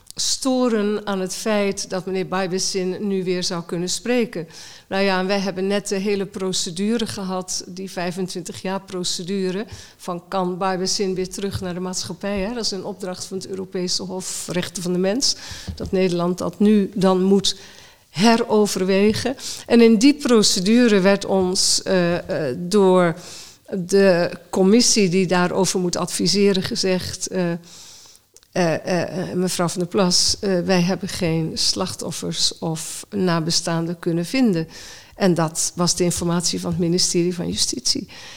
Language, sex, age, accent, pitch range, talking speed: Dutch, female, 50-69, Dutch, 180-200 Hz, 145 wpm